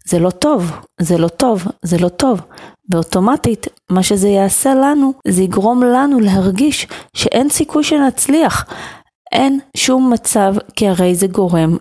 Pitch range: 185-245 Hz